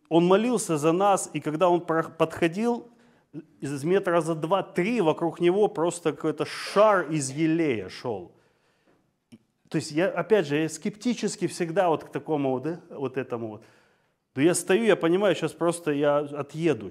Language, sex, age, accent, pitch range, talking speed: Russian, male, 30-49, native, 130-175 Hz, 150 wpm